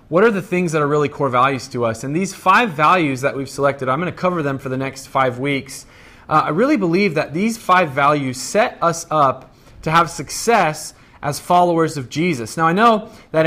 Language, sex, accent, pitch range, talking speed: English, male, American, 135-170 Hz, 225 wpm